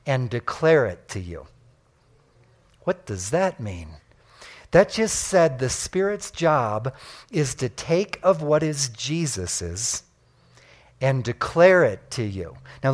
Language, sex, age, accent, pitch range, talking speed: English, male, 50-69, American, 130-180 Hz, 130 wpm